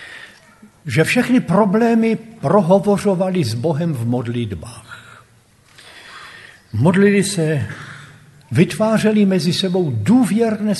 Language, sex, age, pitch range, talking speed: Slovak, male, 70-89, 120-180 Hz, 80 wpm